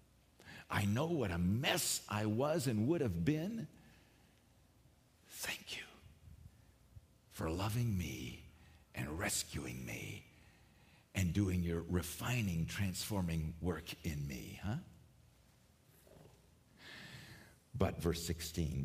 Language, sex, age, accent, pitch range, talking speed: English, male, 50-69, American, 90-140 Hz, 100 wpm